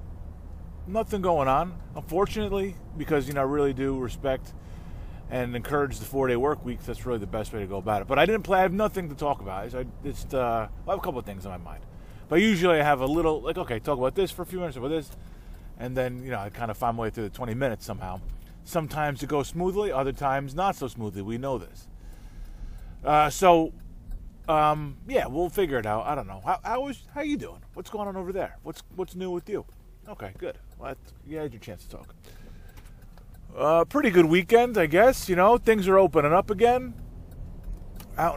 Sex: male